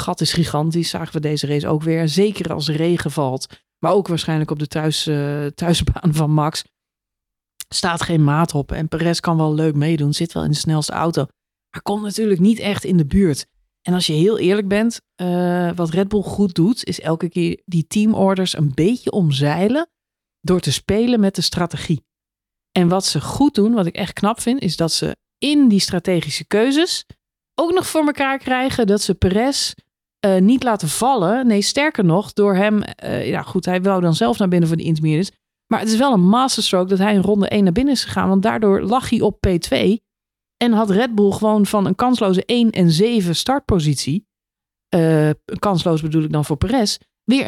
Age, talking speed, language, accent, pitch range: 40-59, 200 wpm, Dutch, Dutch, 160-215 Hz